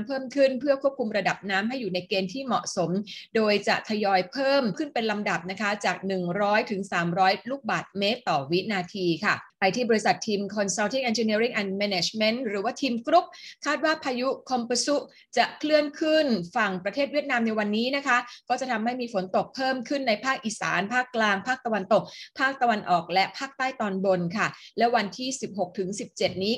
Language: Thai